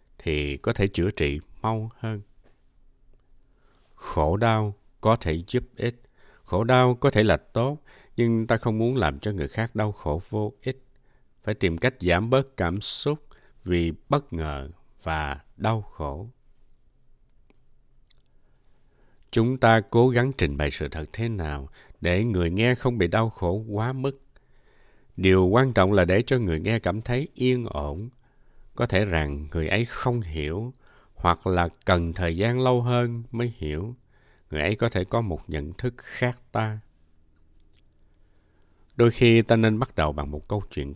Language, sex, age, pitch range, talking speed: Vietnamese, male, 60-79, 80-115 Hz, 165 wpm